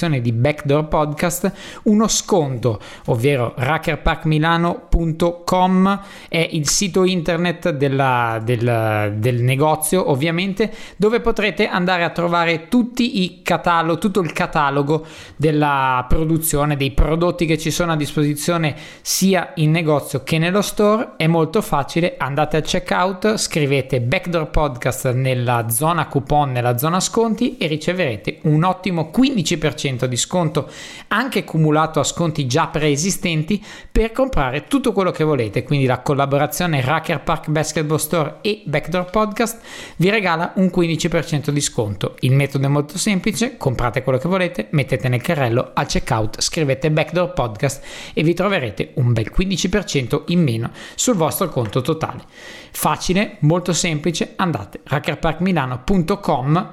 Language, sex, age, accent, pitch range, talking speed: Italian, male, 20-39, native, 140-185 Hz, 135 wpm